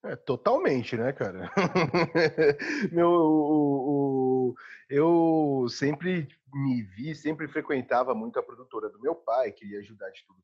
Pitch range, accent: 125-175 Hz, Brazilian